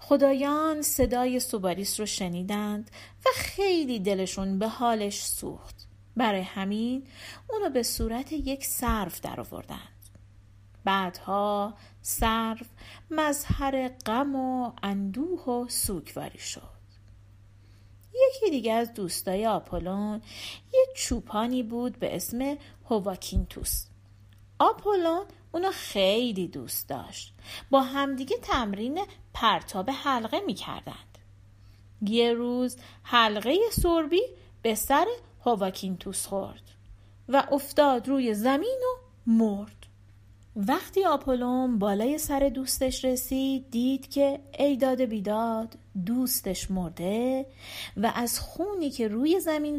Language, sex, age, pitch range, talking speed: Persian, female, 40-59, 180-275 Hz, 100 wpm